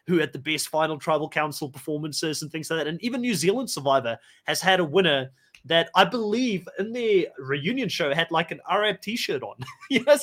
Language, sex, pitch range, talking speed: English, male, 155-205 Hz, 205 wpm